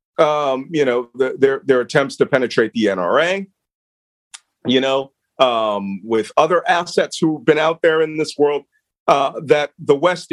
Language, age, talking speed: English, 40-59, 155 wpm